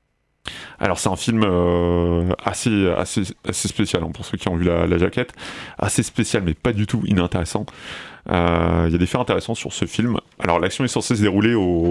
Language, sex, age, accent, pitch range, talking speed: French, male, 30-49, French, 85-100 Hz, 205 wpm